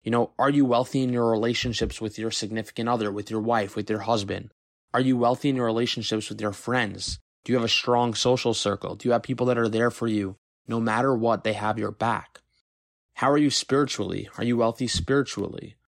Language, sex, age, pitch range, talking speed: English, male, 20-39, 105-125 Hz, 220 wpm